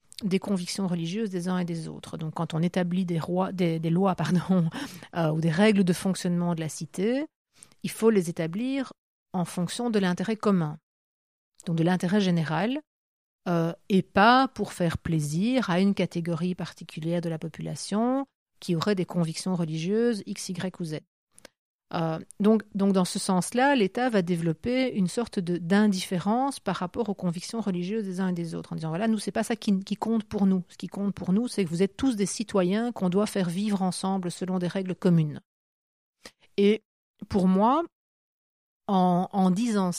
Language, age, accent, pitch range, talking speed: French, 50-69, French, 175-215 Hz, 185 wpm